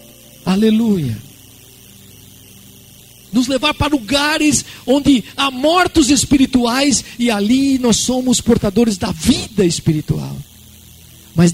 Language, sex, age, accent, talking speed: Portuguese, male, 50-69, Brazilian, 95 wpm